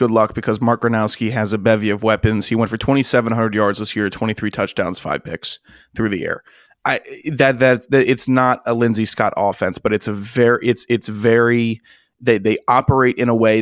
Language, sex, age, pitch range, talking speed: English, male, 20-39, 110-135 Hz, 220 wpm